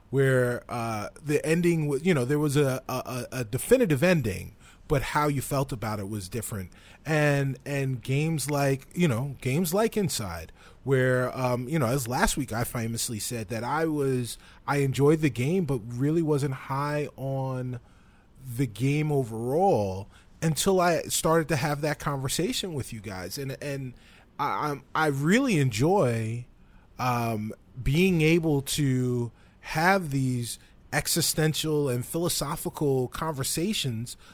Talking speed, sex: 140 wpm, male